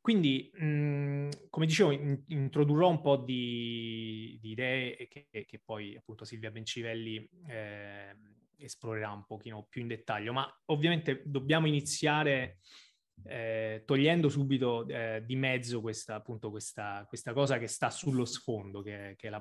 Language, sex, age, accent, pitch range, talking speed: Italian, male, 20-39, native, 110-140 Hz, 140 wpm